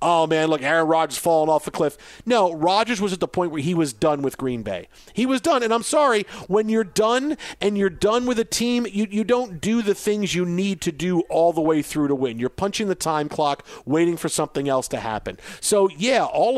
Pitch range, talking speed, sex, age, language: 160-205 Hz, 245 wpm, male, 50-69, English